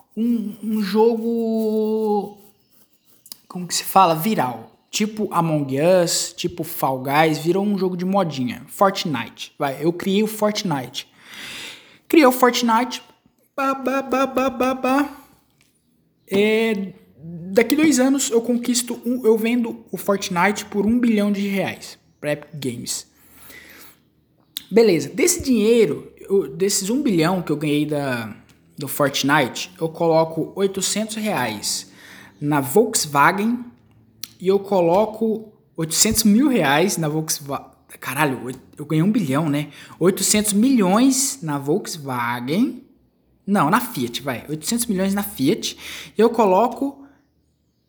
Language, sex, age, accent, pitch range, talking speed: Portuguese, male, 20-39, Brazilian, 150-225 Hz, 125 wpm